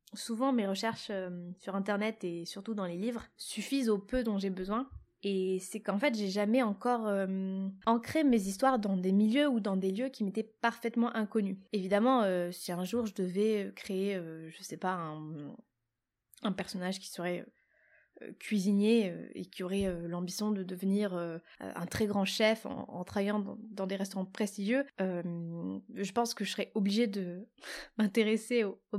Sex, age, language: female, 20-39, French